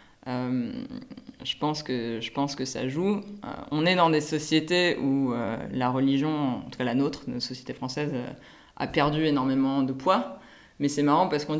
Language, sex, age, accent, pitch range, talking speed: French, female, 20-39, French, 145-170 Hz, 195 wpm